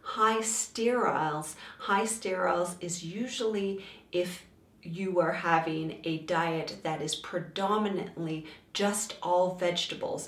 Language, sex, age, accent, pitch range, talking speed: English, female, 40-59, American, 165-200 Hz, 105 wpm